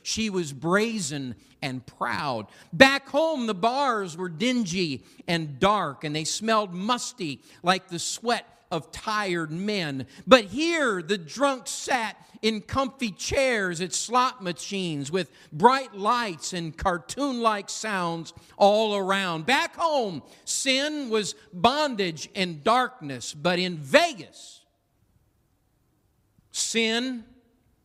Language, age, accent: English, 50-69, American